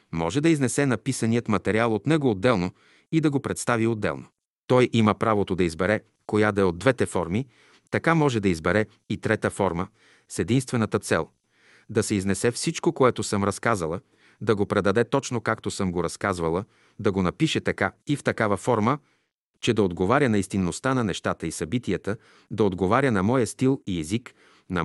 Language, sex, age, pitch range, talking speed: Bulgarian, male, 40-59, 95-130 Hz, 180 wpm